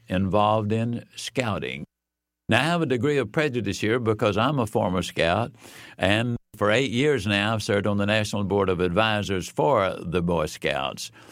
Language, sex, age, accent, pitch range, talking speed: English, male, 60-79, American, 100-140 Hz, 175 wpm